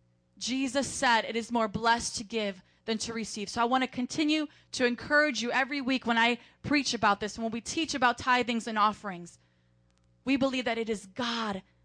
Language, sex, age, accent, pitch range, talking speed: English, female, 20-39, American, 215-280 Hz, 195 wpm